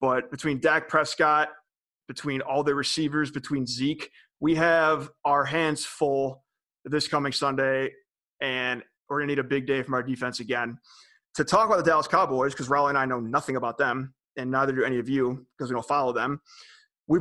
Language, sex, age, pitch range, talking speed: English, male, 30-49, 135-175 Hz, 195 wpm